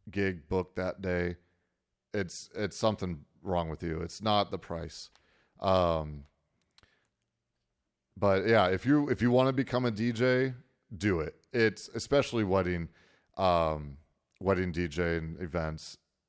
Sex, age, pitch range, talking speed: male, 40-59, 85-100 Hz, 135 wpm